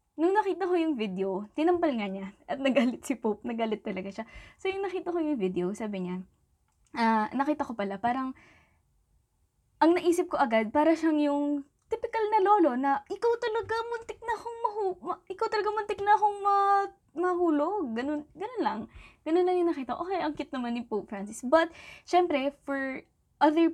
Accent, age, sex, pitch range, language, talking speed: native, 20-39, female, 215-325 Hz, Filipino, 175 wpm